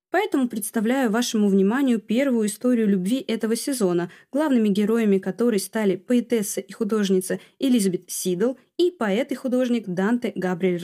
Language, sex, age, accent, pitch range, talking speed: Russian, female, 20-39, native, 190-250 Hz, 135 wpm